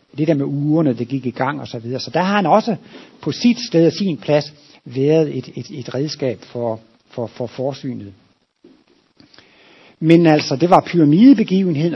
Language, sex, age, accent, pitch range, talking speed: Danish, male, 60-79, native, 125-160 Hz, 180 wpm